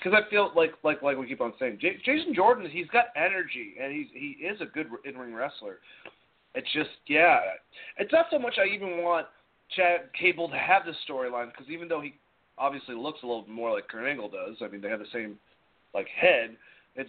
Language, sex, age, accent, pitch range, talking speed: English, male, 30-49, American, 140-225 Hz, 220 wpm